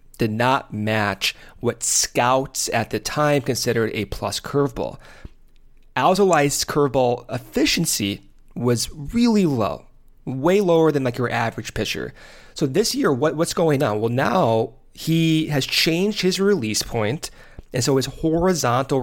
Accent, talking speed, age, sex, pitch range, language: American, 140 wpm, 30-49, male, 115-165 Hz, English